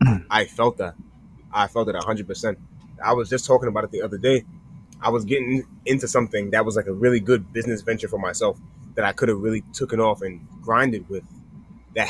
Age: 20-39